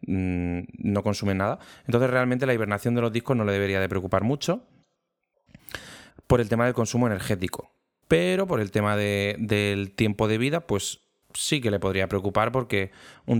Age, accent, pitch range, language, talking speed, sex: 20-39, Spanish, 100-120 Hz, Spanish, 175 wpm, male